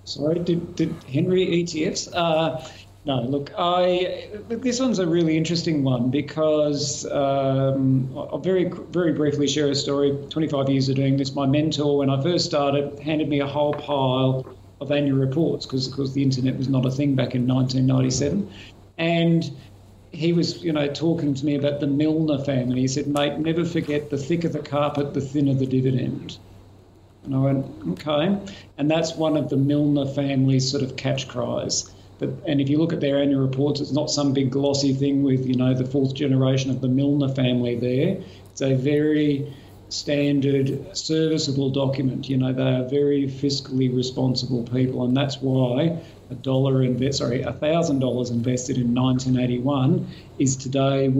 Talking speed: 175 wpm